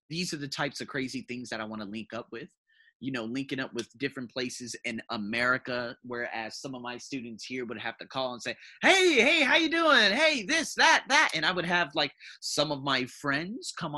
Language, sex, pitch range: English, male, 125-190 Hz